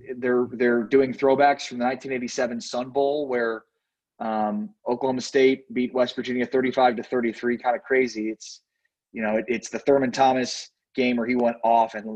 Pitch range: 120-140 Hz